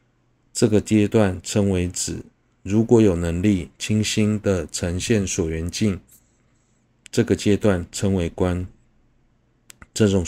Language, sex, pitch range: Chinese, male, 95-120 Hz